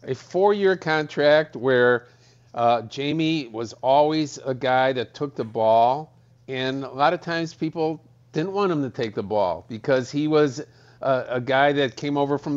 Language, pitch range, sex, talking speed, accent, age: English, 120-145 Hz, male, 175 wpm, American, 50-69